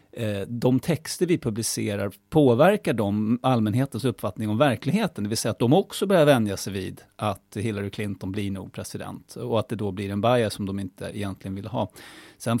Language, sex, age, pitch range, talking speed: English, male, 30-49, 105-135 Hz, 185 wpm